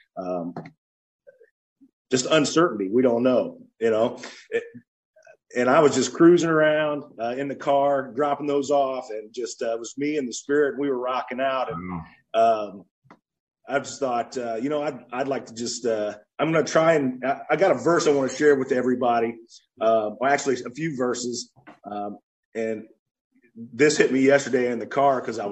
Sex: male